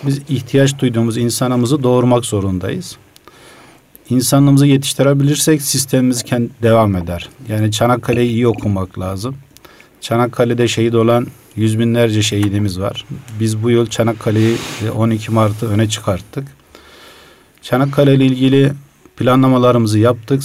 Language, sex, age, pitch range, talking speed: Turkish, male, 50-69, 110-130 Hz, 110 wpm